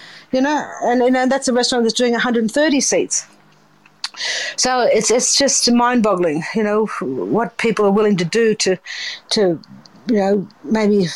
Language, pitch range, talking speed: English, 190-240 Hz, 165 wpm